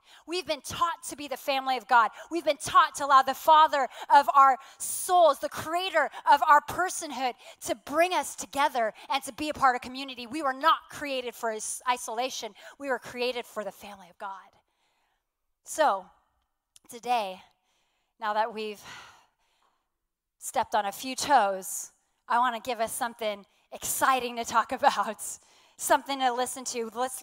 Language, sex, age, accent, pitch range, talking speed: English, female, 30-49, American, 245-330 Hz, 165 wpm